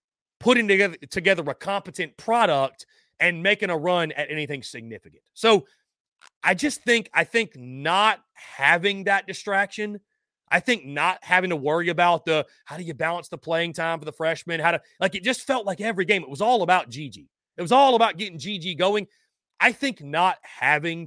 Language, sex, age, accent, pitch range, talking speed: English, male, 30-49, American, 165-225 Hz, 190 wpm